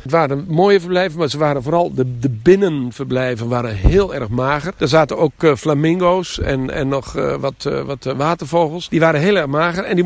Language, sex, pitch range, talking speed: Dutch, male, 130-175 Hz, 190 wpm